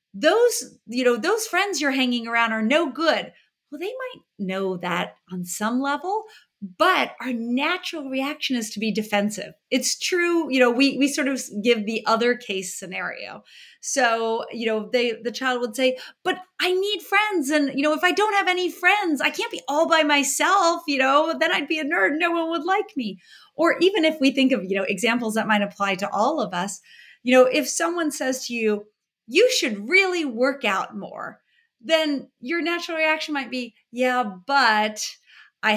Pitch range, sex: 225-325 Hz, female